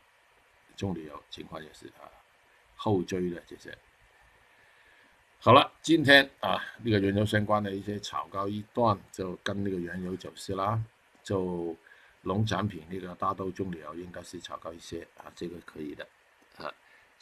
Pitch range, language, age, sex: 90-105 Hz, Chinese, 50-69, male